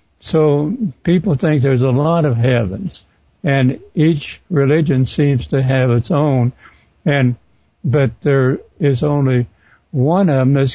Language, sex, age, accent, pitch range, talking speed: English, male, 60-79, American, 120-145 Hz, 140 wpm